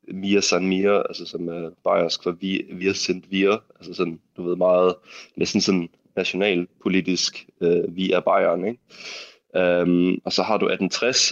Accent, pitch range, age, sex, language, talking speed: native, 90-105 Hz, 20-39, male, Danish, 165 wpm